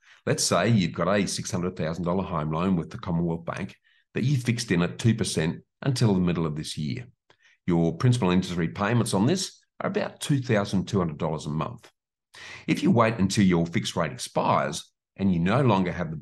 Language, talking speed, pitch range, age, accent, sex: English, 180 wpm, 85-110 Hz, 50-69, Australian, male